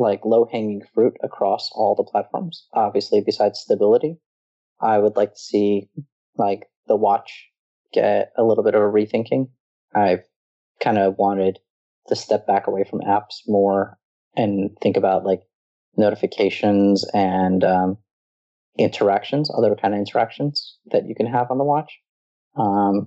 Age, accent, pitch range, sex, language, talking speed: 30-49, American, 95-120 Hz, male, English, 145 wpm